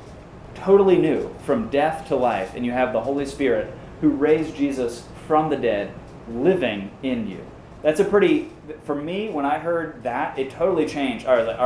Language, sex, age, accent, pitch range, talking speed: English, male, 30-49, American, 125-155 Hz, 180 wpm